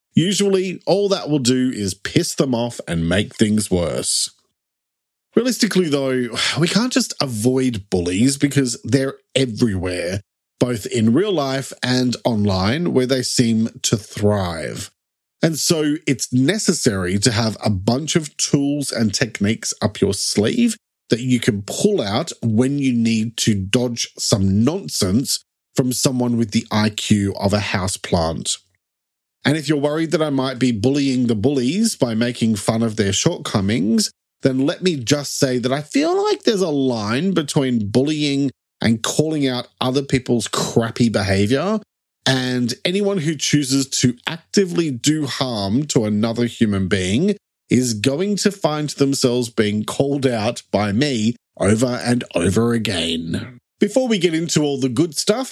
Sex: male